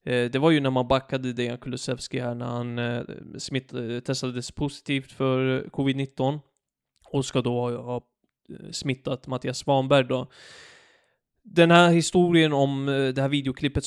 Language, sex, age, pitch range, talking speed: Swedish, male, 20-39, 125-145 Hz, 130 wpm